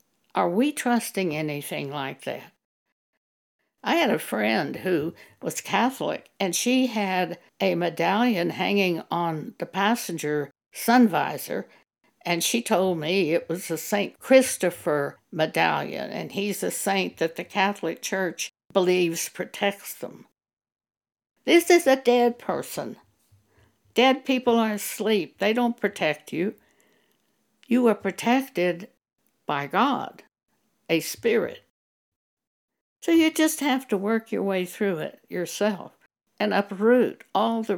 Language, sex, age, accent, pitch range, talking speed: English, female, 60-79, American, 170-225 Hz, 125 wpm